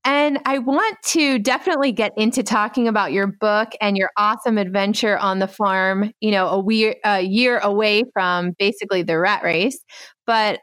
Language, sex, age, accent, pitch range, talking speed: English, female, 30-49, American, 195-235 Hz, 175 wpm